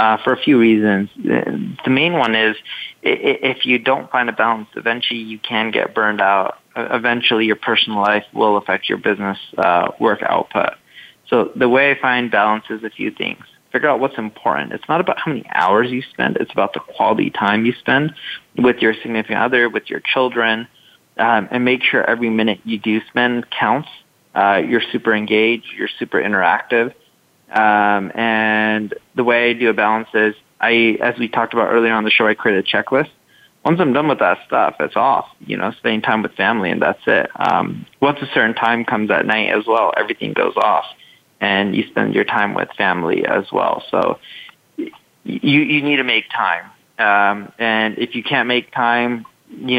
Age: 30-49